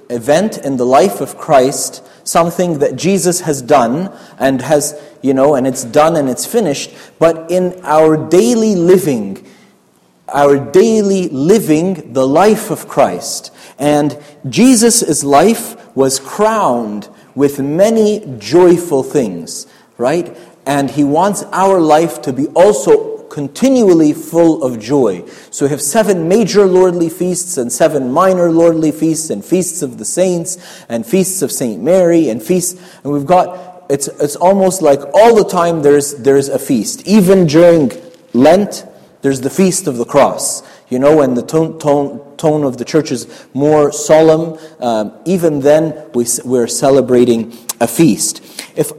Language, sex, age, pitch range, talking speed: English, male, 30-49, 140-185 Hz, 150 wpm